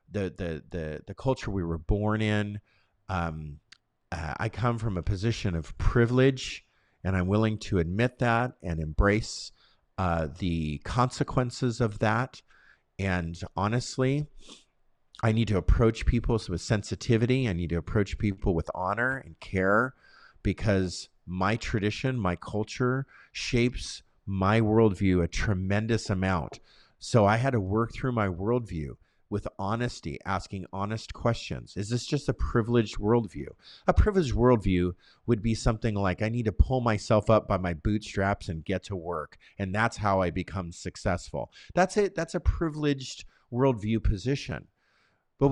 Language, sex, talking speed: English, male, 150 wpm